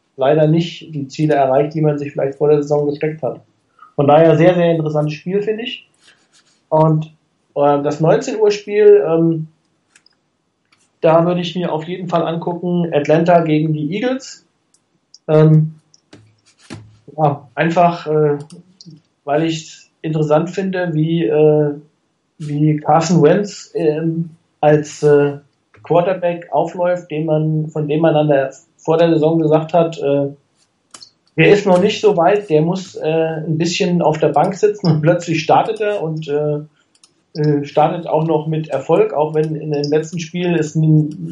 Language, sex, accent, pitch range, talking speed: German, male, German, 150-170 Hz, 150 wpm